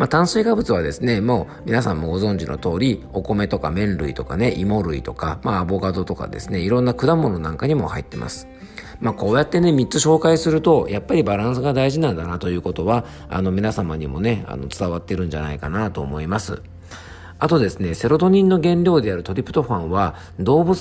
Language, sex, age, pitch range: Japanese, male, 50-69, 85-130 Hz